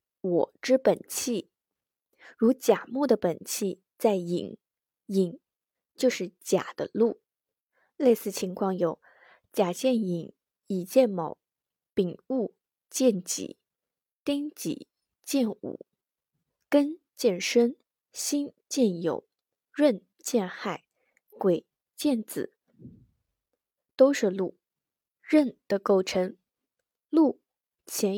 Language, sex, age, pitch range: Chinese, female, 20-39, 190-265 Hz